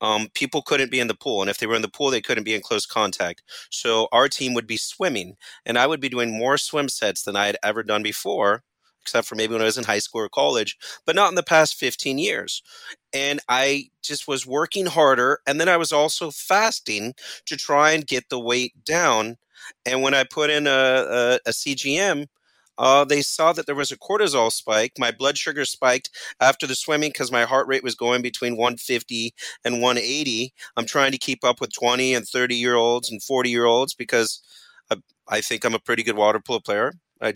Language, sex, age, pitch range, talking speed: English, male, 30-49, 120-150 Hz, 215 wpm